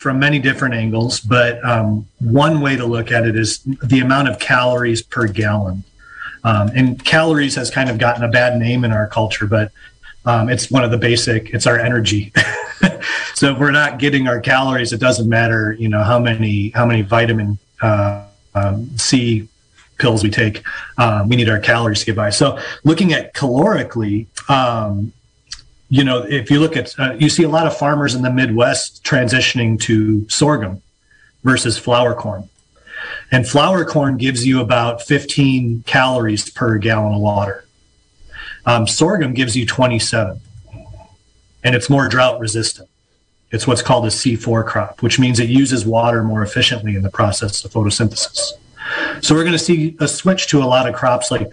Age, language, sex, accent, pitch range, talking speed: 30-49, English, male, American, 110-130 Hz, 180 wpm